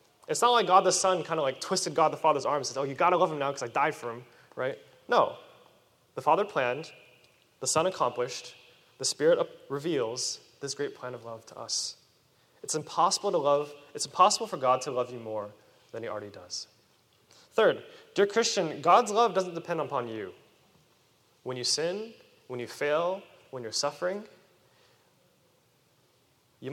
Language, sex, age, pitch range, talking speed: English, male, 20-39, 125-190 Hz, 180 wpm